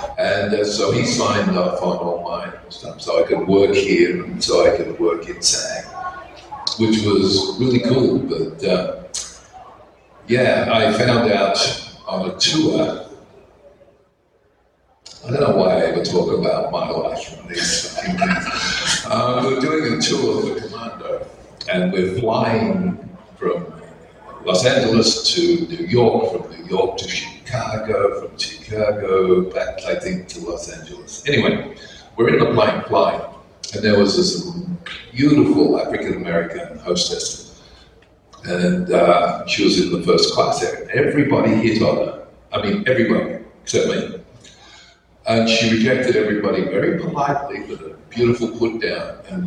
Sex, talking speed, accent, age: male, 145 wpm, American, 50-69